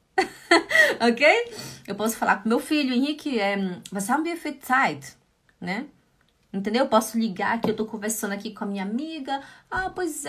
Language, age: Portuguese, 20-39